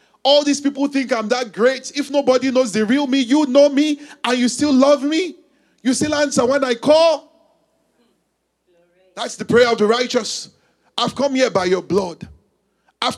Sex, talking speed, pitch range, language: male, 180 wpm, 195-275 Hz, English